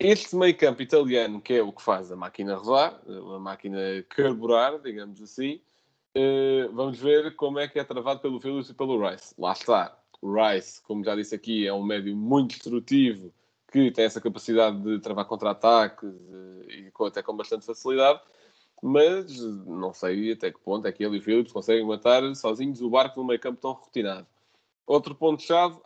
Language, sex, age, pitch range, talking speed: Portuguese, male, 20-39, 105-135 Hz, 180 wpm